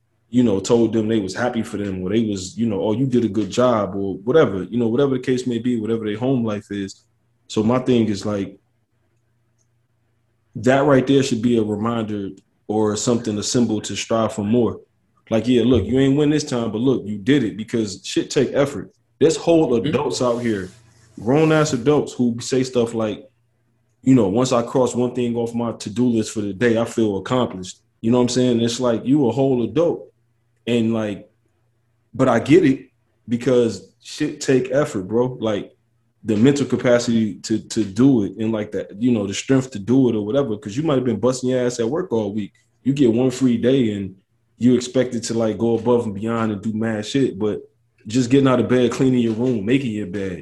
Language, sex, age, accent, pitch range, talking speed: English, male, 20-39, American, 110-125 Hz, 220 wpm